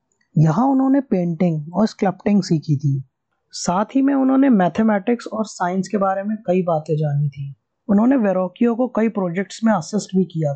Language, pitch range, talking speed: Hindi, 160-220 Hz, 170 wpm